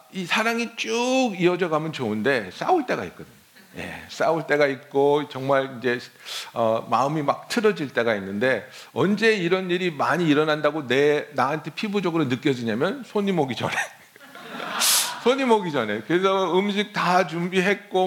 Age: 50-69